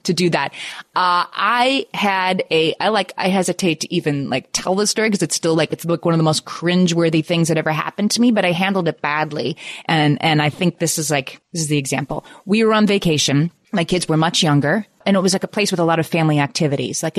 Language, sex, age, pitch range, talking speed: English, female, 30-49, 155-195 Hz, 250 wpm